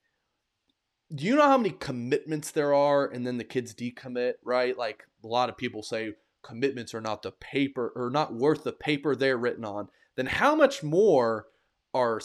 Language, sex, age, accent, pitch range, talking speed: English, male, 20-39, American, 115-150 Hz, 185 wpm